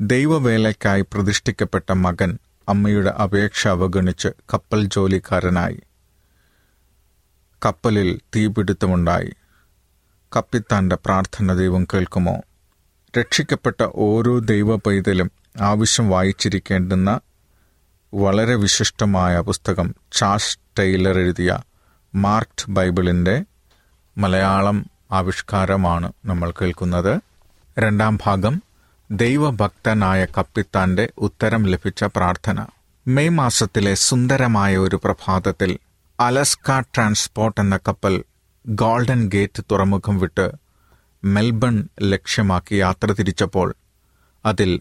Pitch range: 95-110 Hz